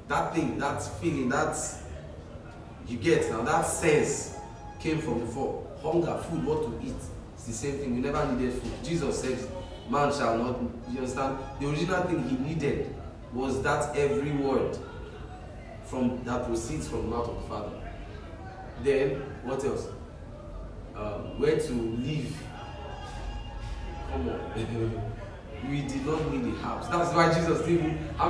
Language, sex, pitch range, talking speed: English, male, 105-155 Hz, 150 wpm